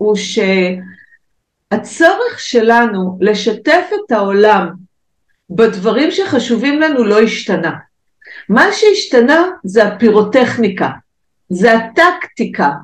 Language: Hebrew